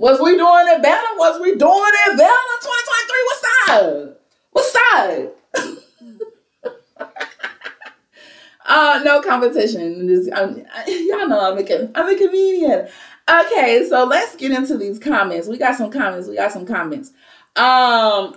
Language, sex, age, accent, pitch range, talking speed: English, female, 30-49, American, 220-330 Hz, 135 wpm